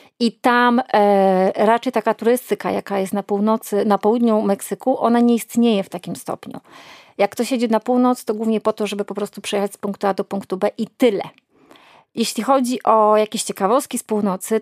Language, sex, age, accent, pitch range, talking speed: Polish, female, 30-49, native, 200-230 Hz, 195 wpm